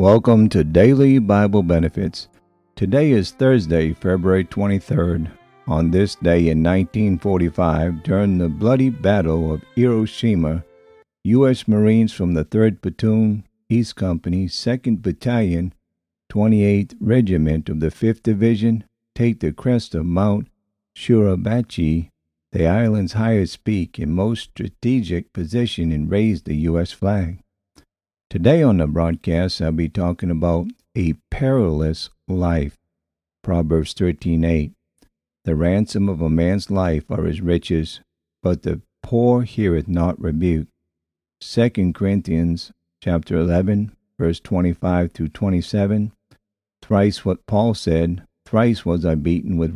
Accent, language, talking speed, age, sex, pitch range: American, English, 125 wpm, 50-69, male, 85-110 Hz